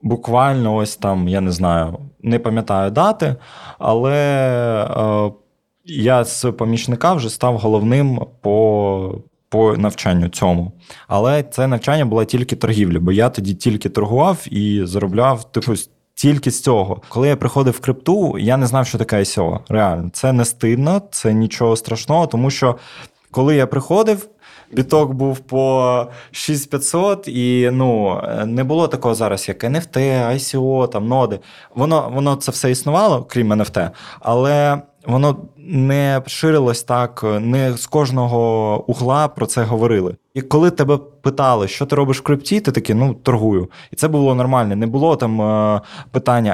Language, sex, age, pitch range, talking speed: Ukrainian, male, 20-39, 110-140 Hz, 150 wpm